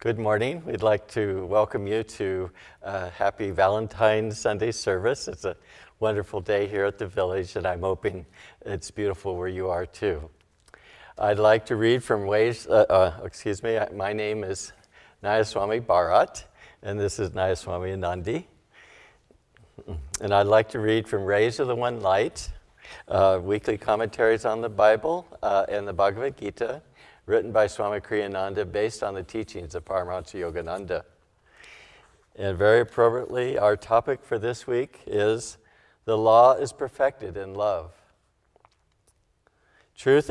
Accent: American